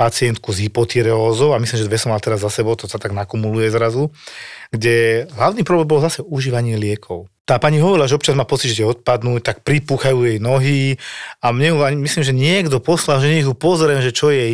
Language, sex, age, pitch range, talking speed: Slovak, male, 40-59, 115-145 Hz, 200 wpm